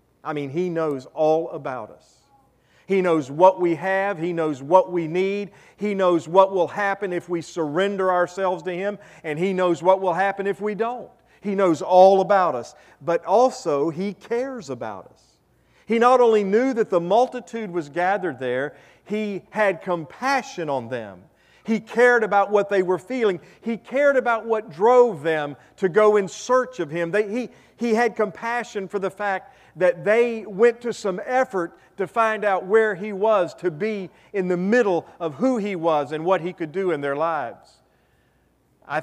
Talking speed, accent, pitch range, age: 185 wpm, American, 170-215 Hz, 40-59